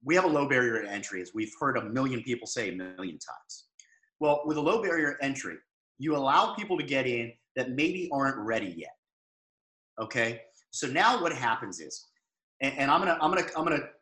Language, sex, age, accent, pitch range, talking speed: English, male, 30-49, American, 130-175 Hz, 205 wpm